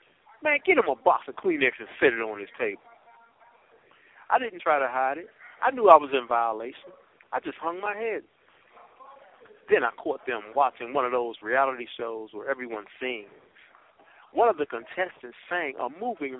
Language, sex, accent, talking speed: English, male, American, 185 wpm